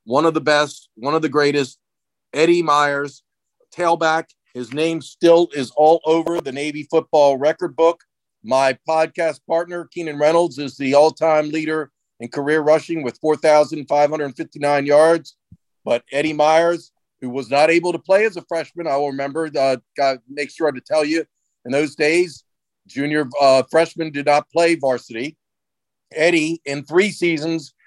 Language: English